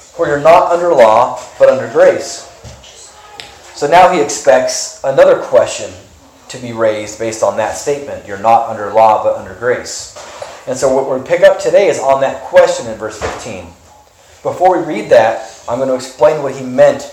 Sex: male